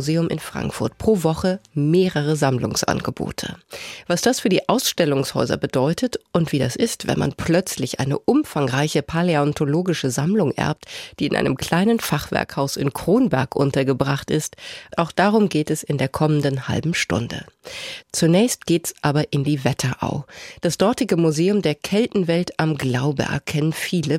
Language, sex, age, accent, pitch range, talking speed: German, female, 30-49, German, 140-180 Hz, 140 wpm